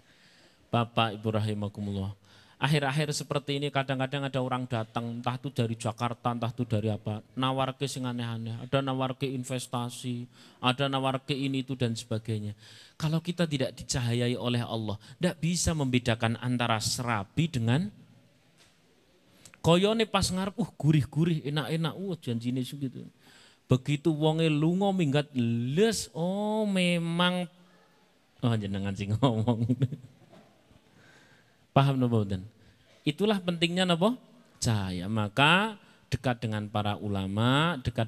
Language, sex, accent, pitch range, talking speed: Indonesian, male, native, 110-140 Hz, 115 wpm